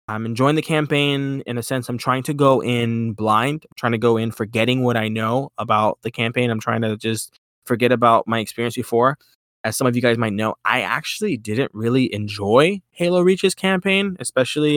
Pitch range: 115-130 Hz